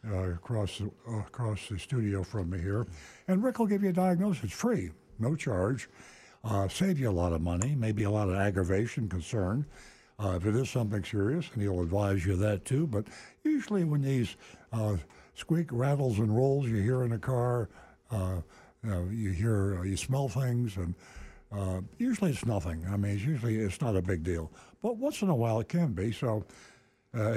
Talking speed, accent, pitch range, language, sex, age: 200 wpm, American, 95-130 Hz, English, male, 60-79